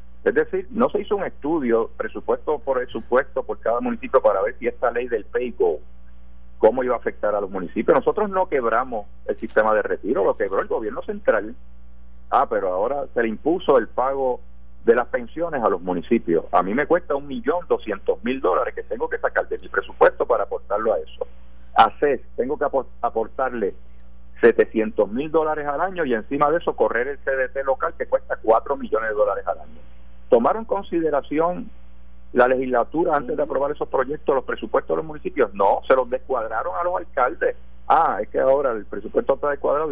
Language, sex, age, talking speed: Spanish, male, 50-69, 195 wpm